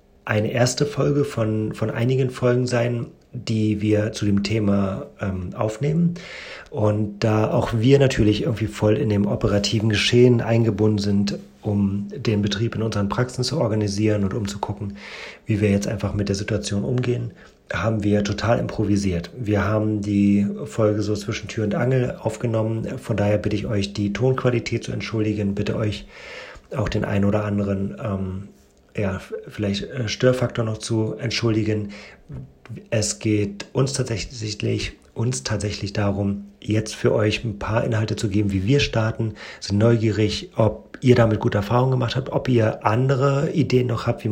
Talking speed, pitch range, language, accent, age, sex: 160 wpm, 105-120 Hz, German, German, 30-49, male